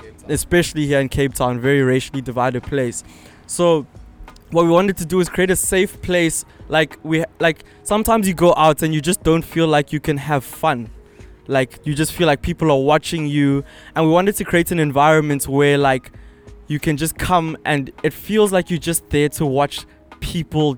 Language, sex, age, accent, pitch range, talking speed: English, male, 20-39, South African, 135-155 Hz, 200 wpm